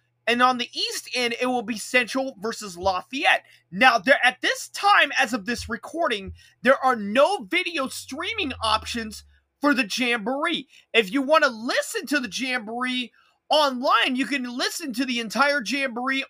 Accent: American